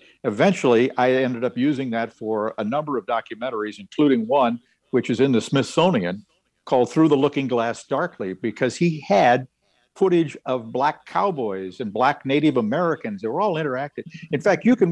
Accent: American